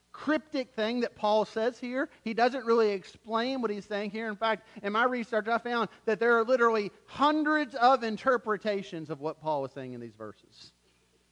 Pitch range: 160-235 Hz